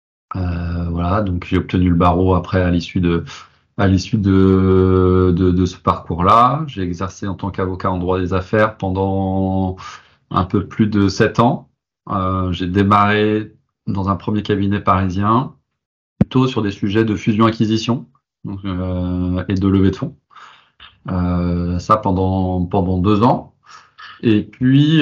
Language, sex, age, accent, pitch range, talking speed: French, male, 30-49, French, 90-110 Hz, 150 wpm